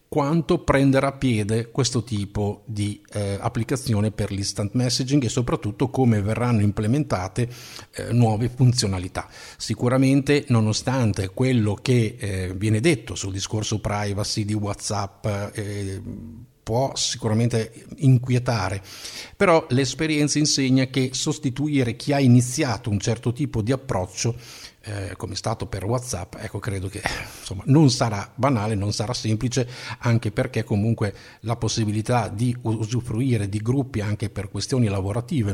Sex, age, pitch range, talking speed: male, 50-69, 100-125 Hz, 130 wpm